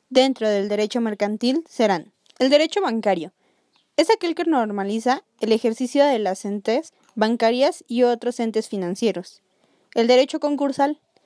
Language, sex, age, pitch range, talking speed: Spanish, female, 20-39, 220-280 Hz, 135 wpm